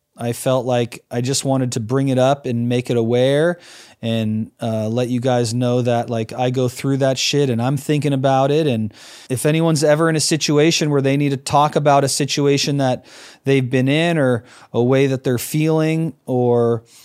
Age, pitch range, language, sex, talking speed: 30-49, 125-145 Hz, English, male, 205 wpm